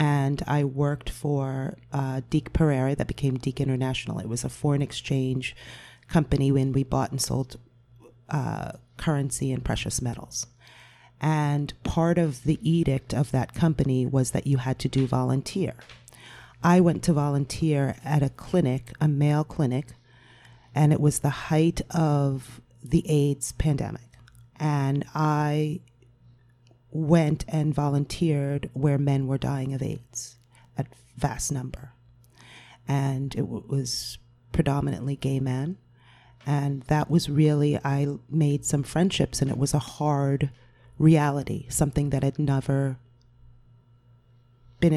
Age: 40-59